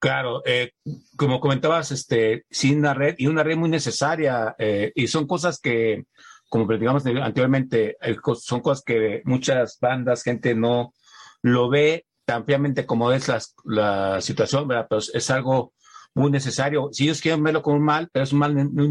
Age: 50-69